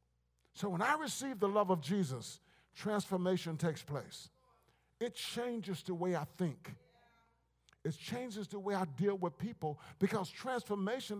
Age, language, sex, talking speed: 50-69, English, male, 145 wpm